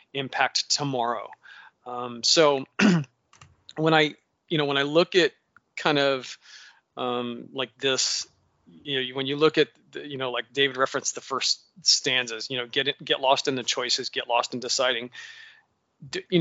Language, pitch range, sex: English, 130-160 Hz, male